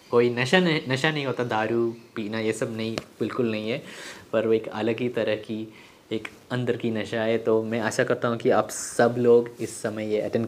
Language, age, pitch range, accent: Hindi, 20-39, 110-125 Hz, native